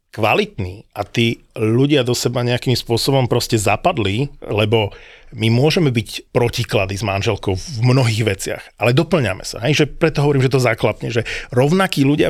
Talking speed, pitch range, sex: 150 wpm, 115-140 Hz, male